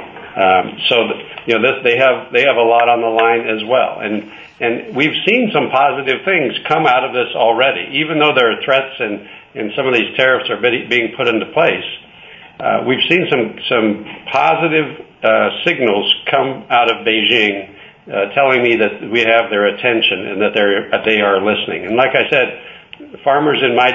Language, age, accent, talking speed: English, 60-79, American, 190 wpm